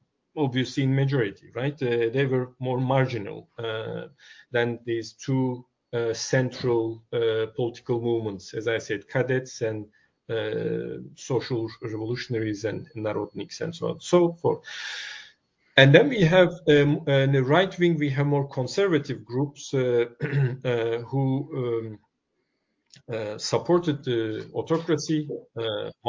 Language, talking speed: English, 130 wpm